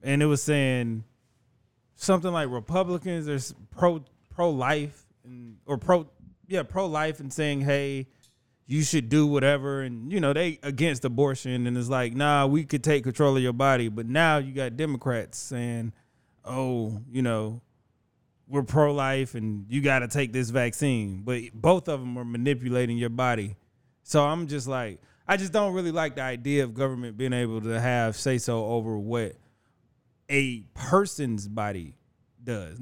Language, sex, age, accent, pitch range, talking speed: English, male, 20-39, American, 120-145 Hz, 170 wpm